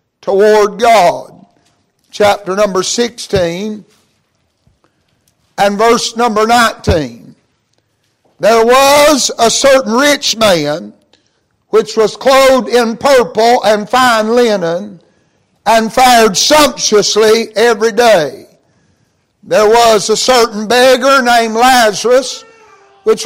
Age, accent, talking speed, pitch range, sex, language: 60-79, American, 95 wpm, 215-255 Hz, male, English